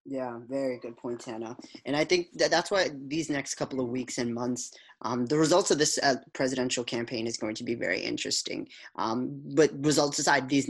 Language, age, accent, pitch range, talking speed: English, 20-39, American, 125-150 Hz, 210 wpm